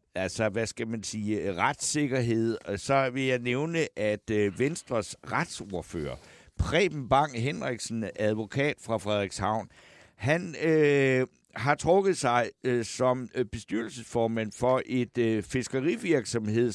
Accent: native